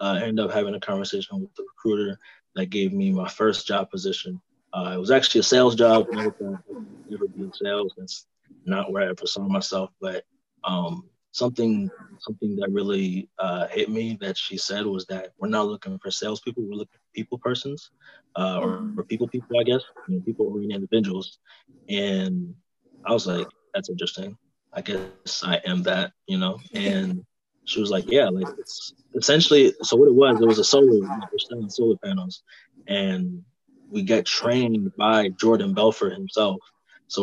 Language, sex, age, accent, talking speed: English, male, 20-39, American, 180 wpm